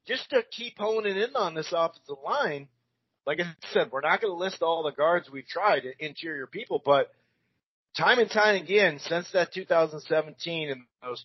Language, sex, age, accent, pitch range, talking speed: English, male, 40-59, American, 150-205 Hz, 180 wpm